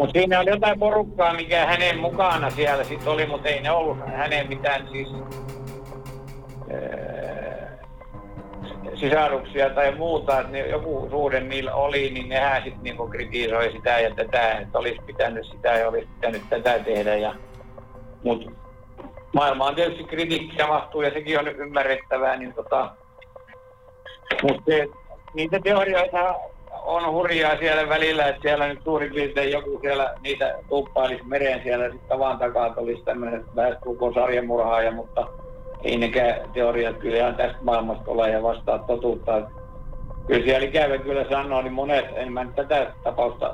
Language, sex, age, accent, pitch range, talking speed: Finnish, male, 60-79, native, 120-150 Hz, 135 wpm